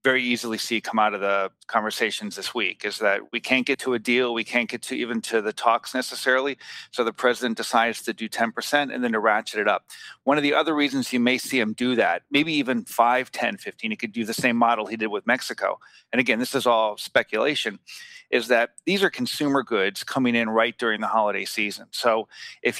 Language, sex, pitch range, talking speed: English, male, 115-130 Hz, 230 wpm